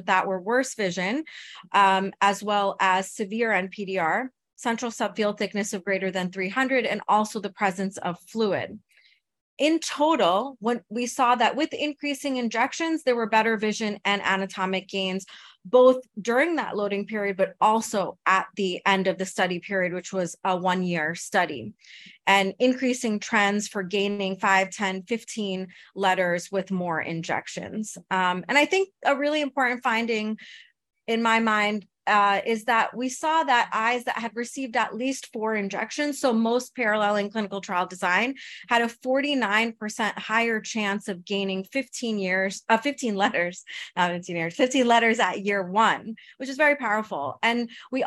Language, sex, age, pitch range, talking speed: English, female, 30-49, 195-245 Hz, 160 wpm